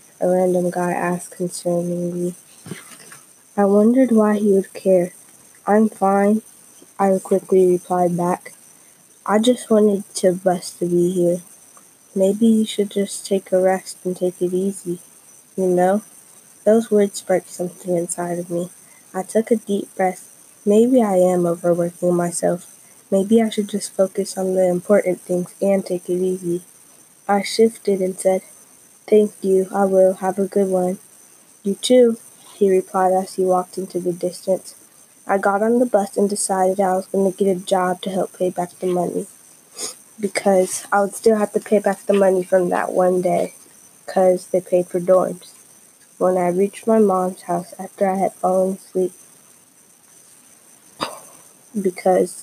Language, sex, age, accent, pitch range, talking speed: English, female, 10-29, American, 180-200 Hz, 165 wpm